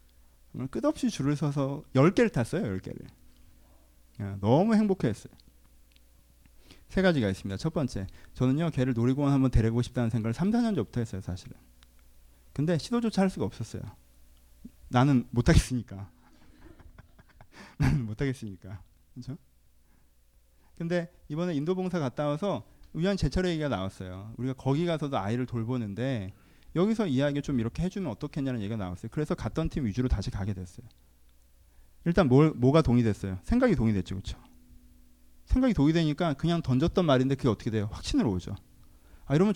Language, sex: Korean, male